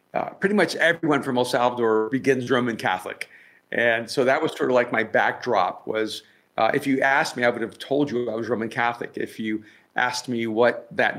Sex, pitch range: male, 115-140 Hz